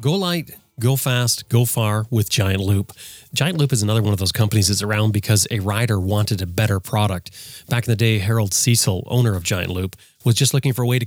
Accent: American